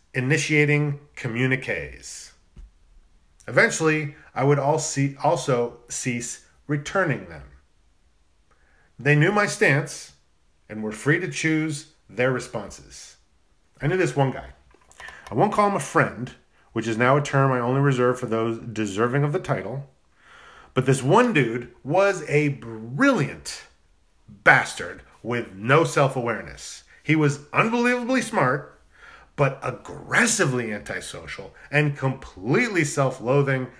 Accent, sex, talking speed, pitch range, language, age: American, male, 115 wpm, 110-155 Hz, English, 30-49